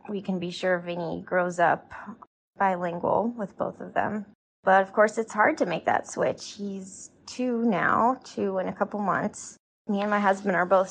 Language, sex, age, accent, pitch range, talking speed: English, female, 20-39, American, 180-205 Hz, 195 wpm